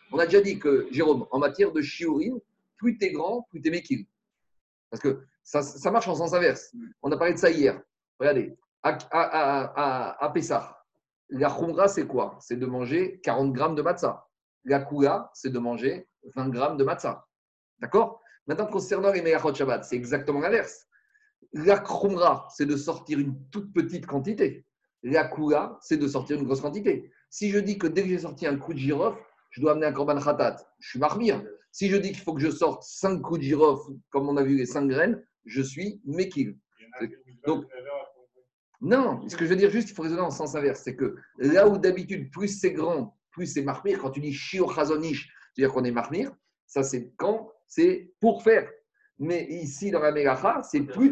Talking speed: 205 wpm